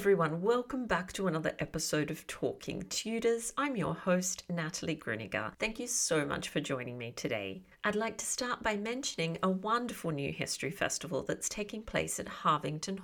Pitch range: 155-220 Hz